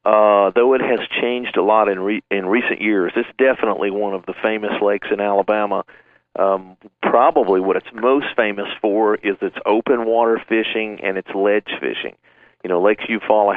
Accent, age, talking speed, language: American, 50-69, 180 wpm, English